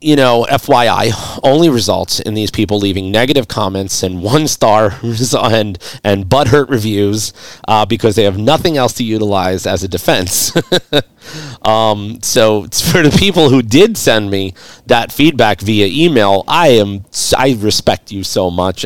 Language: English